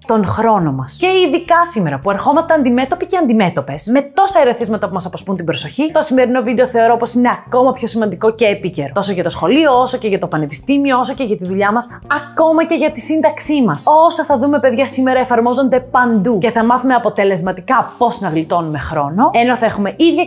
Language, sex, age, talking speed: Greek, female, 20-39, 210 wpm